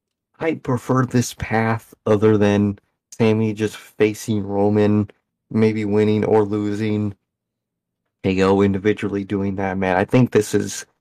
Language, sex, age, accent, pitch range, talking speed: English, male, 30-49, American, 100-115 Hz, 130 wpm